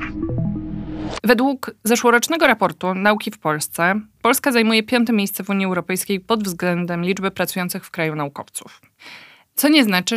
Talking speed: 135 wpm